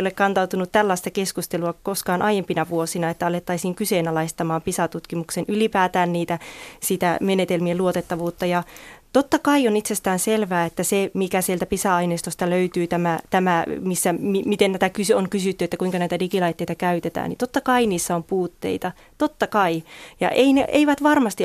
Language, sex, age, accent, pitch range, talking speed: Finnish, female, 30-49, native, 180-215 Hz, 150 wpm